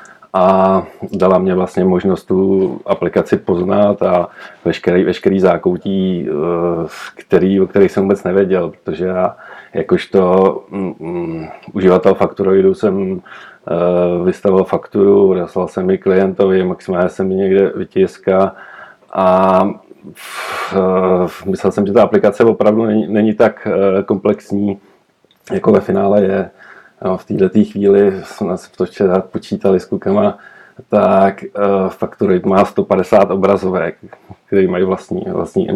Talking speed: 115 wpm